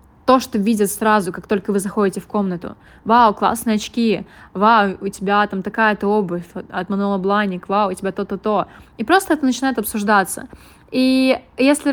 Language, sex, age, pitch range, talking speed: Russian, female, 20-39, 190-225 Hz, 160 wpm